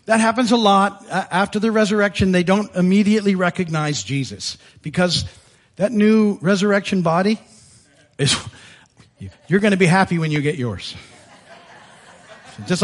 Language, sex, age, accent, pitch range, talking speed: English, male, 50-69, American, 150-210 Hz, 130 wpm